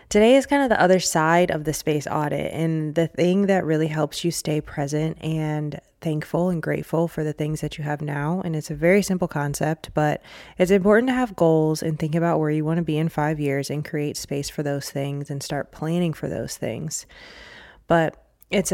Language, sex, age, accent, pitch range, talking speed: English, female, 20-39, American, 150-170 Hz, 220 wpm